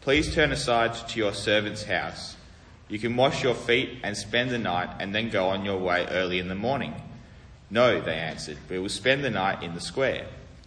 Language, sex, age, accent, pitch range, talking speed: English, male, 30-49, Australian, 90-120 Hz, 210 wpm